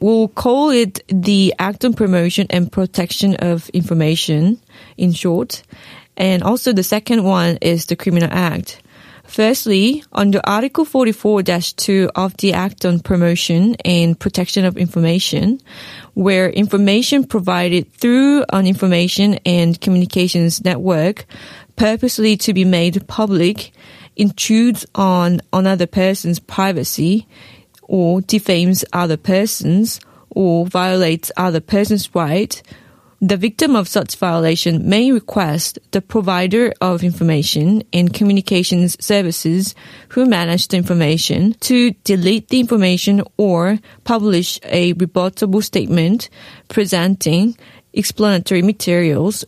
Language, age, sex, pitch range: Korean, 20-39, female, 175-210 Hz